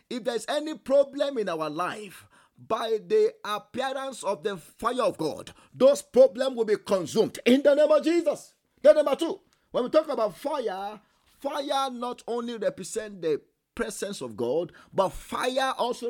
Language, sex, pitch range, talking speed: English, male, 215-275 Hz, 165 wpm